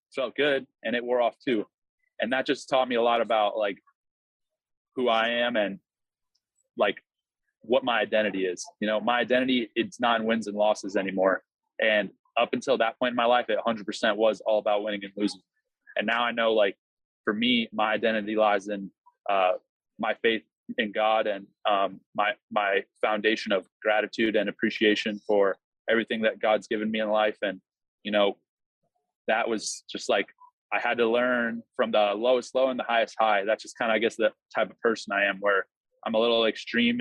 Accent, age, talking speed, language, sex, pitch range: American, 20-39, 195 wpm, English, male, 105-125 Hz